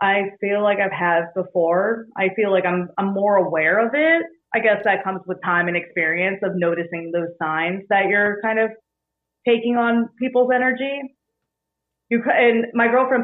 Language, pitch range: English, 170-205 Hz